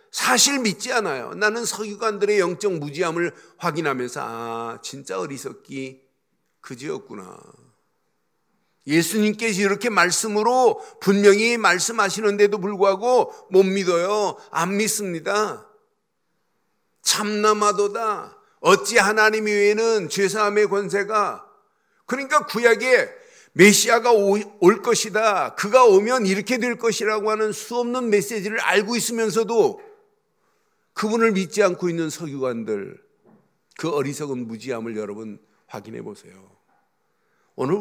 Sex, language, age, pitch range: male, Korean, 50-69, 170-240 Hz